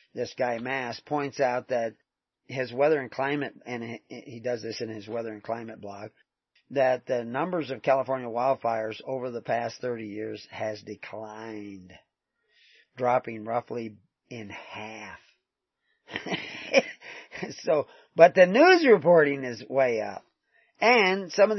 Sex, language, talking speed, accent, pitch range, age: male, English, 135 wpm, American, 110-140 Hz, 40-59